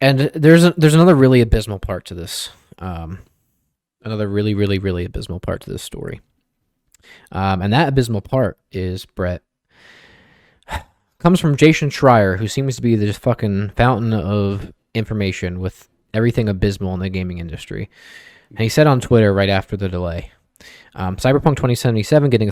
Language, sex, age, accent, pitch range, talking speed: English, male, 20-39, American, 95-125 Hz, 165 wpm